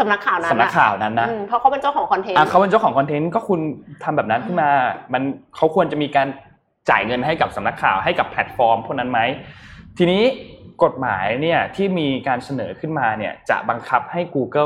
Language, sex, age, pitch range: Thai, male, 20-39, 120-175 Hz